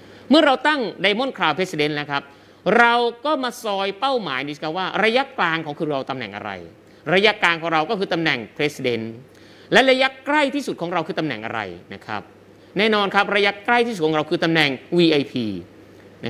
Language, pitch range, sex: Thai, 140-215 Hz, male